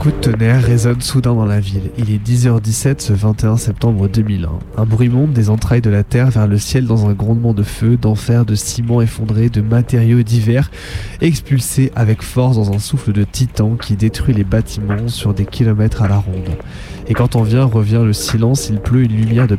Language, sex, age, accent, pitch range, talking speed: French, male, 20-39, French, 105-120 Hz, 210 wpm